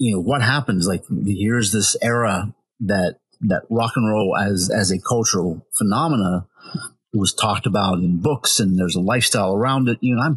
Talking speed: 185 wpm